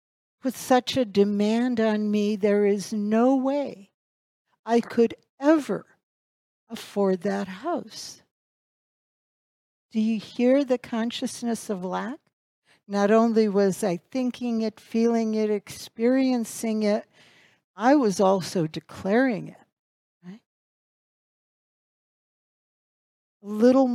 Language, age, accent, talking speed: English, 60-79, American, 100 wpm